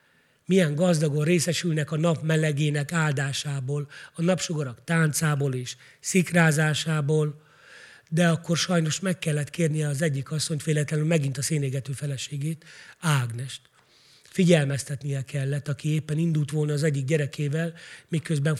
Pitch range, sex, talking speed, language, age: 150-175 Hz, male, 120 wpm, Hungarian, 30-49